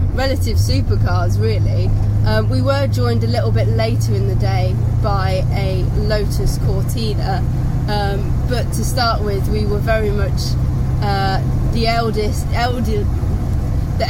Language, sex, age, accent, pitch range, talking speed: English, female, 20-39, British, 100-120 Hz, 135 wpm